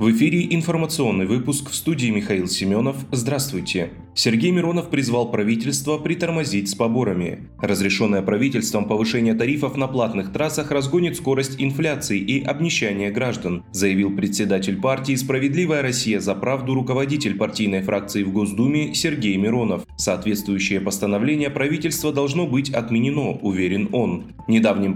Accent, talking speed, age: native, 125 wpm, 20-39